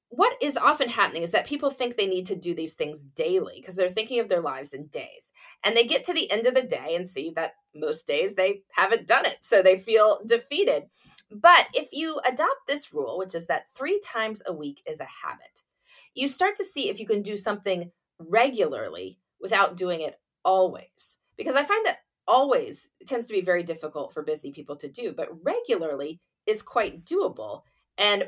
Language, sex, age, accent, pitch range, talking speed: English, female, 30-49, American, 180-275 Hz, 205 wpm